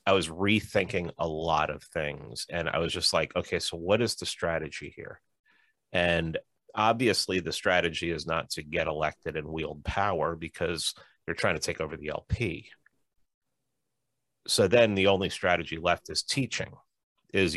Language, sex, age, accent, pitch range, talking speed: English, male, 30-49, American, 80-95 Hz, 165 wpm